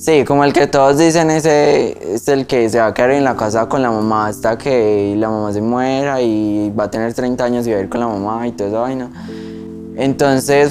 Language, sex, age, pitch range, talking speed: Spanish, male, 10-29, 110-130 Hz, 245 wpm